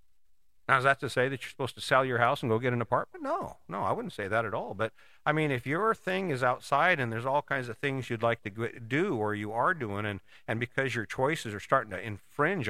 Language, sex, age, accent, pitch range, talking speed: English, male, 50-69, American, 105-135 Hz, 265 wpm